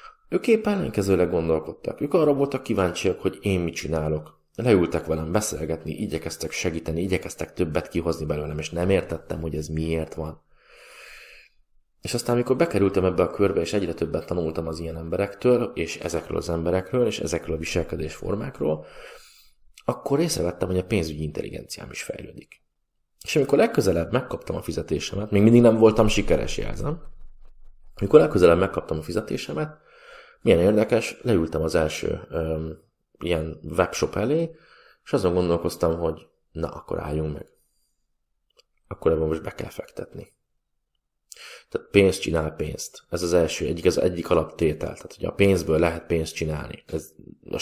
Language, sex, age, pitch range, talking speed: Hungarian, male, 30-49, 80-105 Hz, 145 wpm